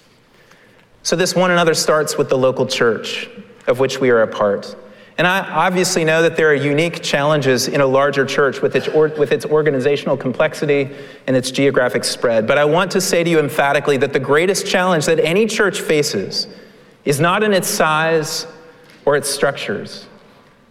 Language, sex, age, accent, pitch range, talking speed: English, male, 40-59, American, 165-220 Hz, 175 wpm